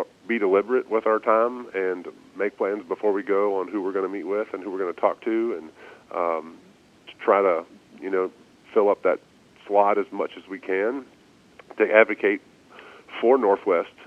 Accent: American